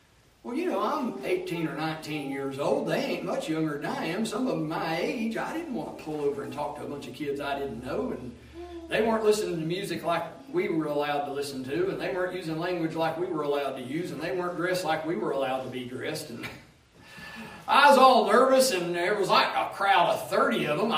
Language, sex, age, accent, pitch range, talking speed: English, male, 40-59, American, 140-190 Hz, 250 wpm